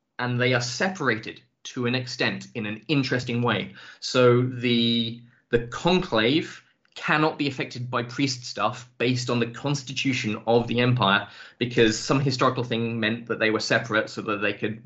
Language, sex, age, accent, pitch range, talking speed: English, male, 20-39, British, 110-125 Hz, 165 wpm